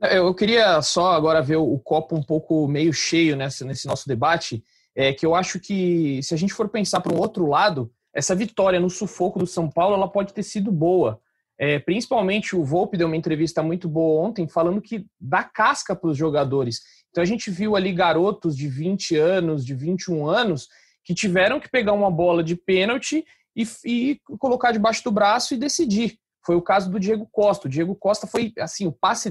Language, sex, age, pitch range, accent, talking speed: Portuguese, male, 20-39, 165-215 Hz, Brazilian, 200 wpm